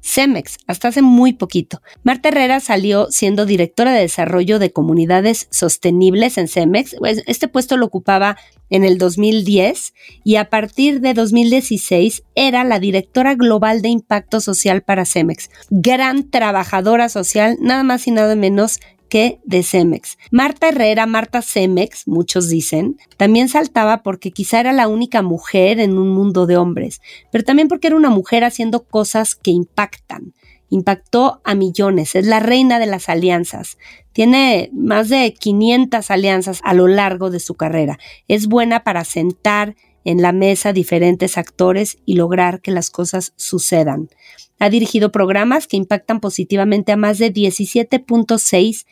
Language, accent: Spanish, Mexican